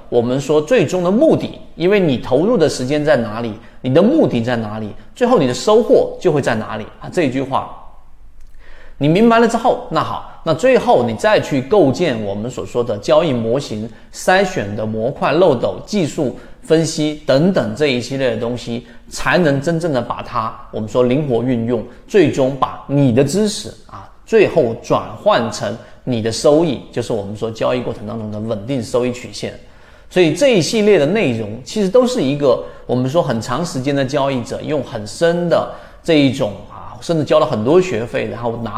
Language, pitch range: Chinese, 115-165 Hz